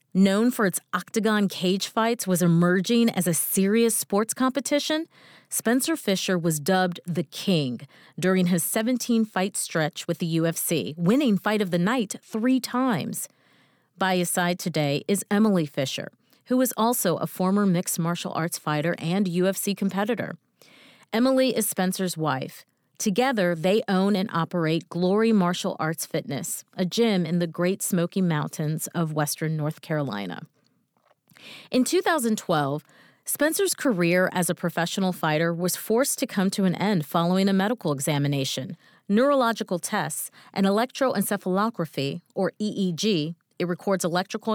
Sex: female